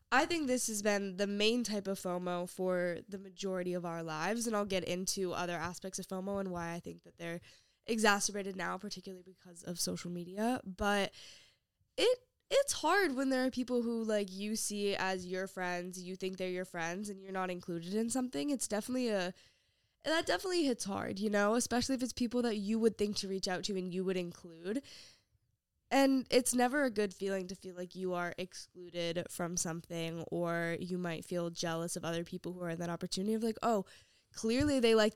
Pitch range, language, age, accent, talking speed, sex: 180-220 Hz, English, 10-29, American, 205 wpm, female